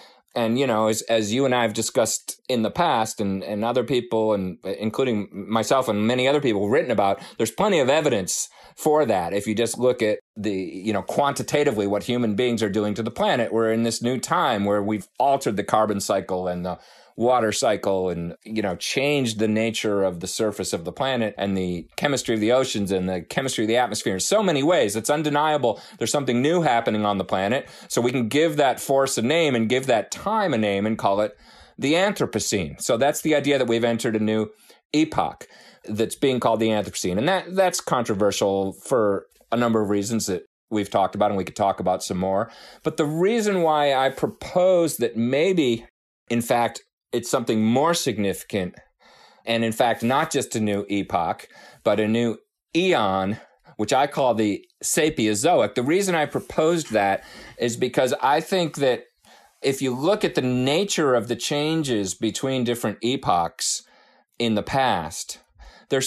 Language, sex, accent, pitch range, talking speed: English, male, American, 105-135 Hz, 190 wpm